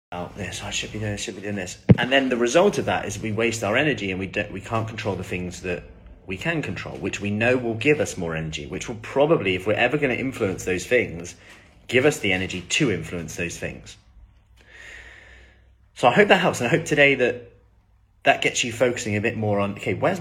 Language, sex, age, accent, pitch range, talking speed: English, male, 30-49, British, 95-125 Hz, 235 wpm